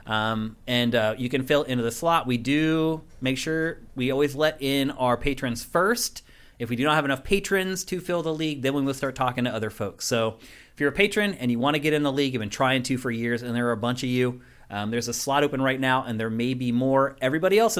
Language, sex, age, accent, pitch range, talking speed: English, male, 30-49, American, 120-145 Hz, 265 wpm